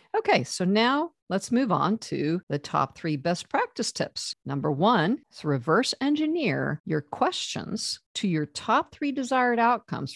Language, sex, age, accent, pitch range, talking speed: English, female, 50-69, American, 150-225 Hz, 155 wpm